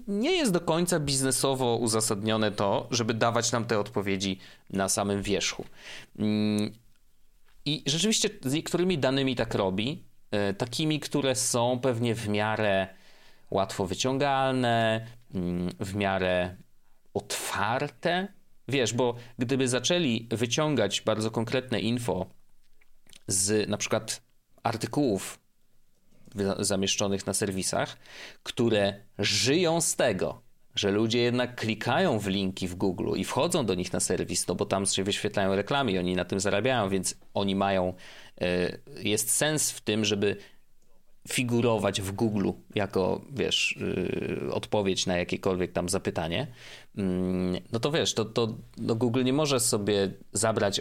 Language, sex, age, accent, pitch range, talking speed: Polish, male, 30-49, native, 100-130 Hz, 130 wpm